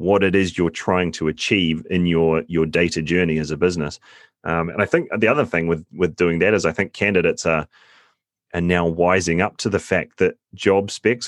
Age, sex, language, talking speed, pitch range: 30-49, male, English, 220 wpm, 80-90 Hz